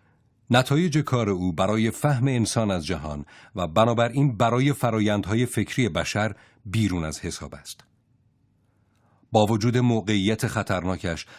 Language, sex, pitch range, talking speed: Persian, male, 95-125 Hz, 115 wpm